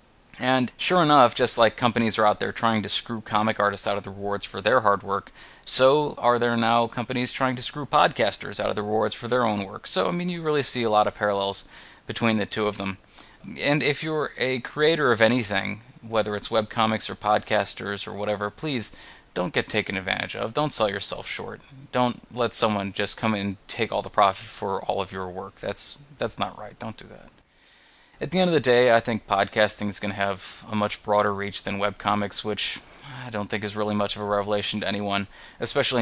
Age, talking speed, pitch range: 20-39, 225 wpm, 100-120 Hz